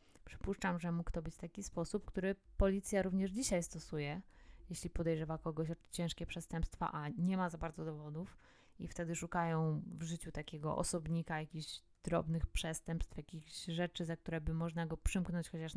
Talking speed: 165 wpm